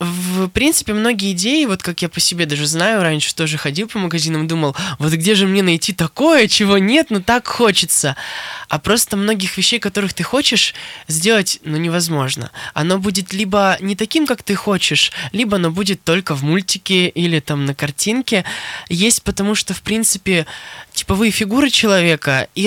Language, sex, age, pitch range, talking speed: Russian, male, 20-39, 170-210 Hz, 175 wpm